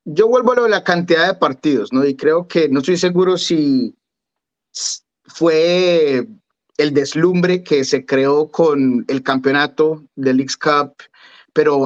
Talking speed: 150 wpm